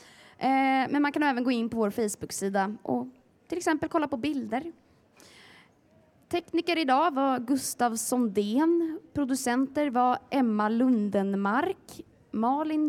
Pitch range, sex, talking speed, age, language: 220-300 Hz, female, 115 wpm, 20-39, Swedish